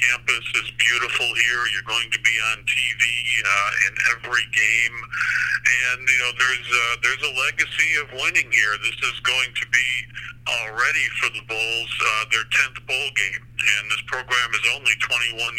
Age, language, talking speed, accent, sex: 50-69, English, 175 wpm, American, male